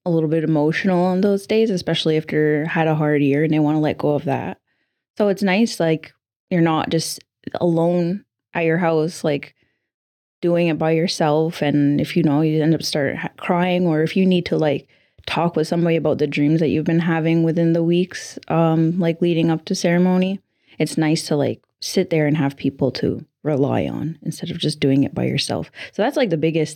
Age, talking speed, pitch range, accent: 20-39, 220 wpm, 150-175 Hz, American